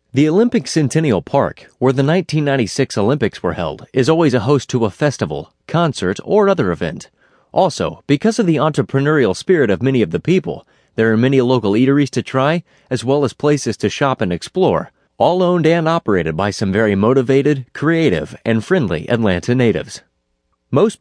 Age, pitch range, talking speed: 30-49, 110-150 Hz, 175 wpm